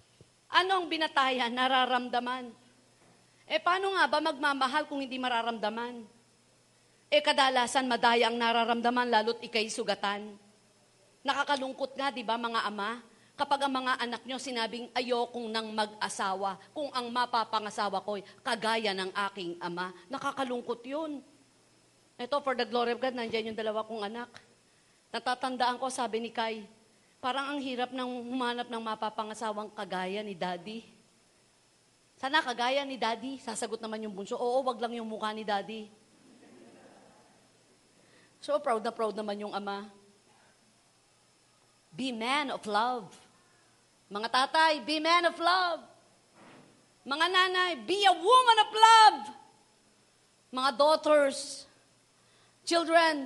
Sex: female